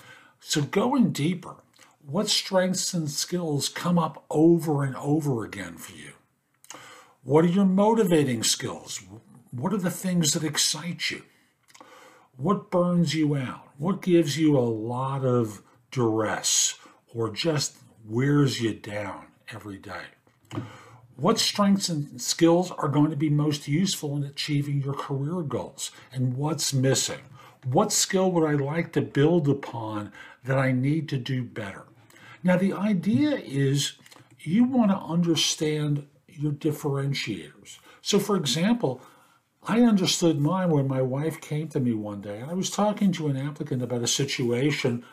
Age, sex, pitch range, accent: 50-69, male, 125-170 Hz, American